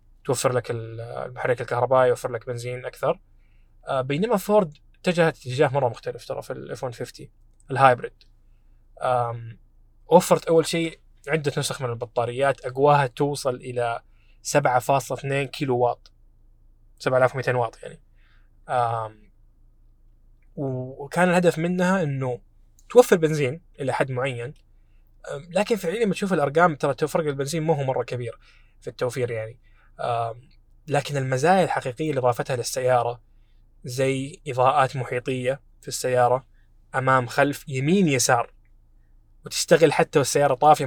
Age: 20-39